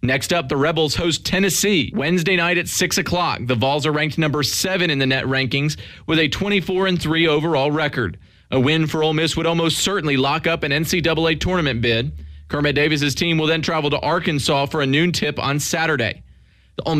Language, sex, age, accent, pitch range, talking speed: English, male, 30-49, American, 135-165 Hz, 200 wpm